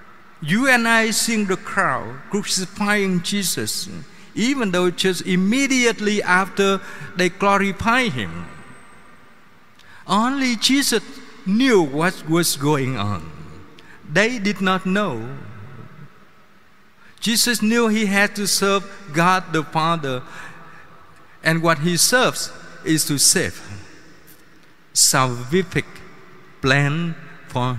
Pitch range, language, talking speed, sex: 130-195 Hz, Vietnamese, 100 wpm, male